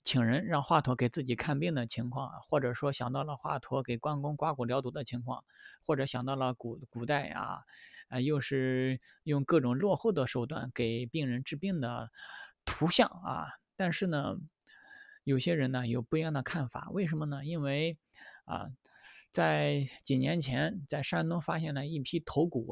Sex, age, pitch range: male, 20-39, 130-160 Hz